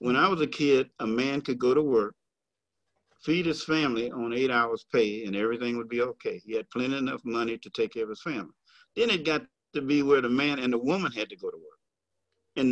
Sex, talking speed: male, 240 wpm